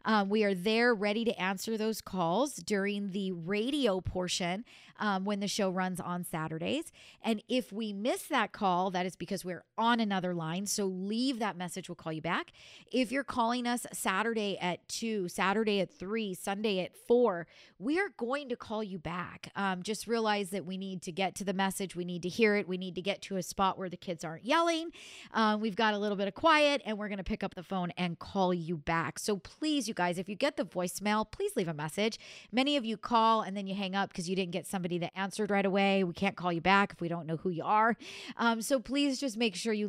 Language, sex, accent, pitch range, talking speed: English, female, American, 185-240 Hz, 240 wpm